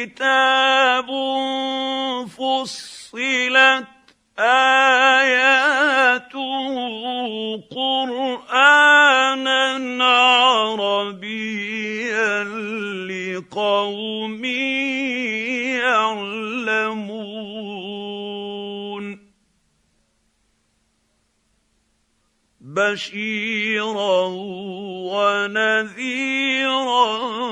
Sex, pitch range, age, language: male, 210-265 Hz, 50-69, Arabic